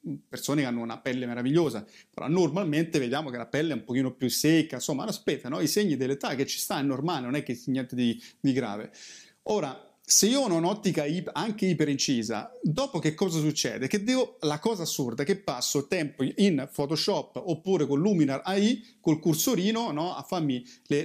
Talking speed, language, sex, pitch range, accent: 190 wpm, Italian, male, 140-190 Hz, native